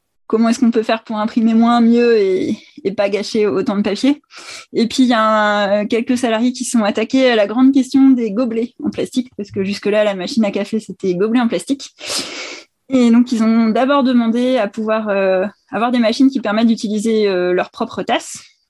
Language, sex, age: French, female, 20-39